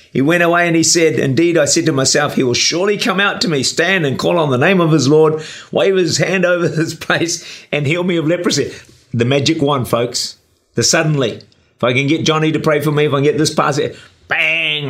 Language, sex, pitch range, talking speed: English, male, 115-160 Hz, 240 wpm